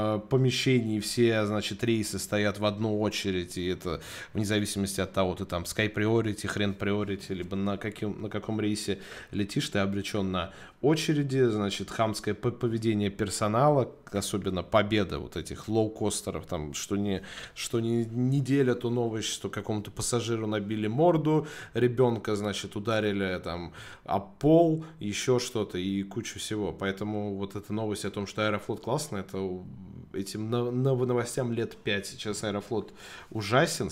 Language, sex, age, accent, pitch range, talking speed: Russian, male, 20-39, native, 100-120 Hz, 145 wpm